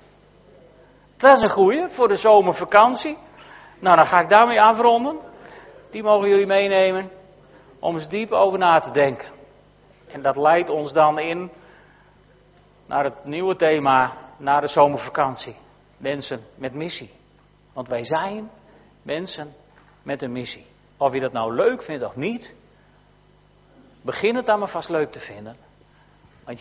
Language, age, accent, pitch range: Dutch, 50-69, Dutch, 135-195 Hz